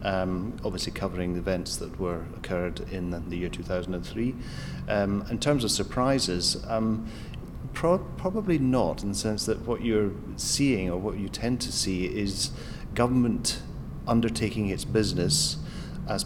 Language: English